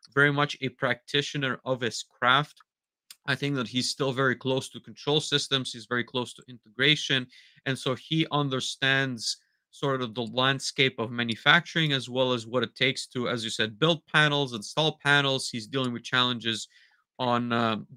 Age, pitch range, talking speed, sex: 30-49, 125-150 Hz, 175 wpm, male